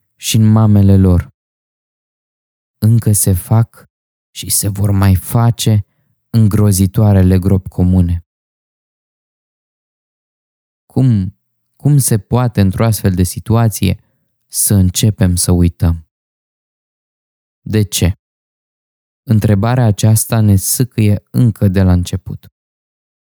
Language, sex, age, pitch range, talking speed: Romanian, male, 20-39, 95-115 Hz, 95 wpm